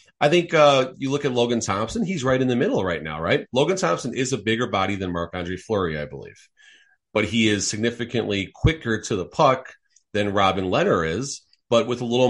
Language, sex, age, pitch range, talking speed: English, male, 30-49, 95-120 Hz, 215 wpm